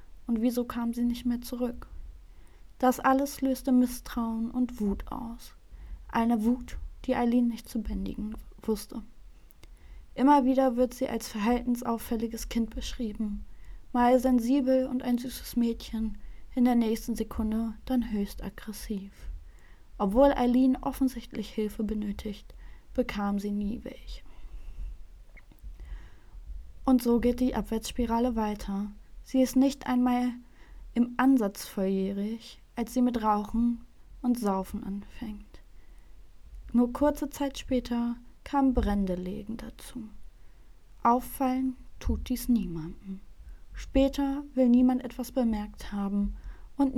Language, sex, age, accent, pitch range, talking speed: German, female, 20-39, German, 215-255 Hz, 115 wpm